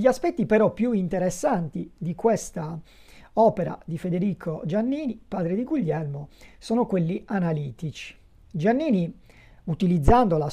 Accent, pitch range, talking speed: native, 160-225 Hz, 115 wpm